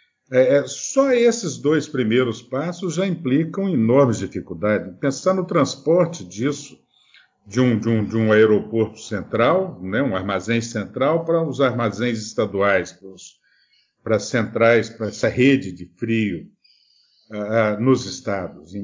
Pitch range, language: 110-155 Hz, Portuguese